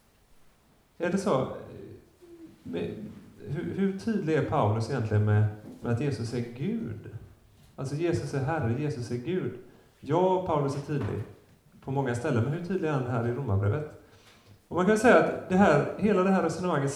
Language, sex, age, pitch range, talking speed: Swedish, male, 30-49, 110-165 Hz, 170 wpm